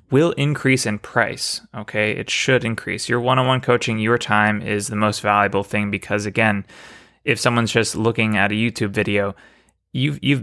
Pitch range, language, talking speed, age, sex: 105-125 Hz, English, 185 wpm, 20-39, male